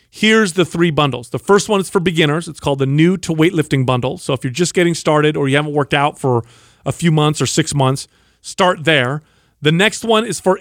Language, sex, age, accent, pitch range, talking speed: English, male, 40-59, American, 140-180 Hz, 240 wpm